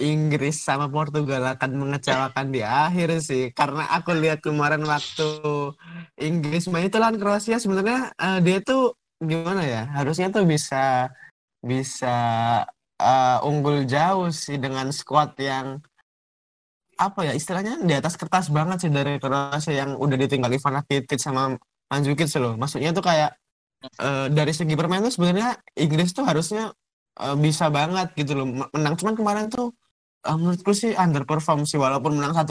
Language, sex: Indonesian, male